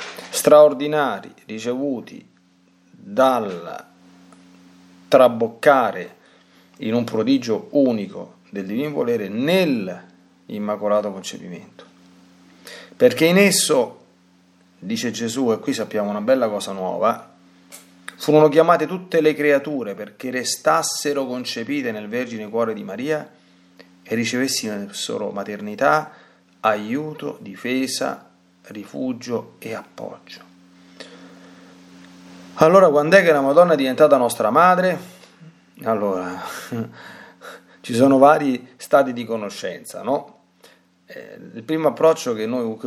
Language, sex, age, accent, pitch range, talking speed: Italian, male, 40-59, native, 90-145 Hz, 100 wpm